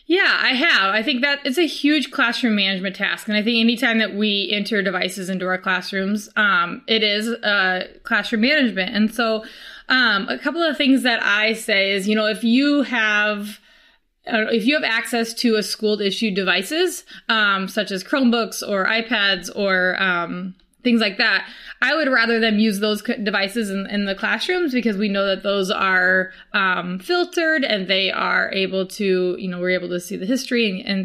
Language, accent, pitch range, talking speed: English, American, 200-255 Hz, 195 wpm